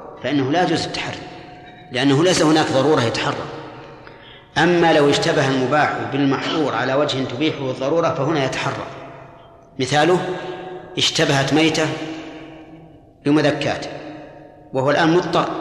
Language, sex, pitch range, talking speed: Arabic, male, 135-160 Hz, 105 wpm